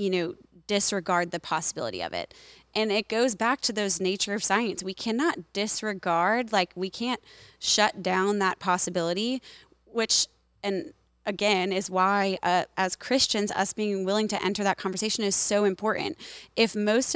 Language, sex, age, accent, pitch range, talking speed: English, female, 20-39, American, 175-200 Hz, 160 wpm